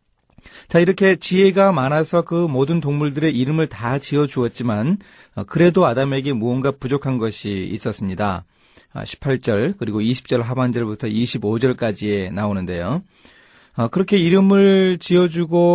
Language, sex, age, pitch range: Korean, male, 30-49, 115-170 Hz